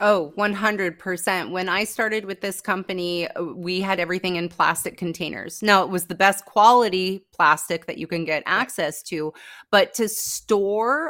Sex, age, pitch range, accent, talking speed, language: female, 30-49, 165-205 Hz, American, 160 wpm, English